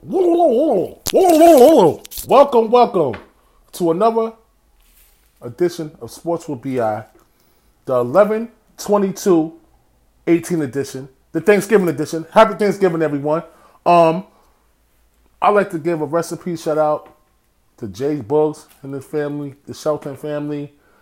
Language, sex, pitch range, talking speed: English, male, 125-160 Hz, 125 wpm